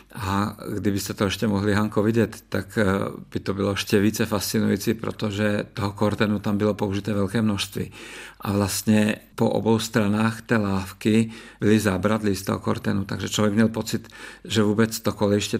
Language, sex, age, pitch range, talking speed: Czech, male, 50-69, 105-115 Hz, 160 wpm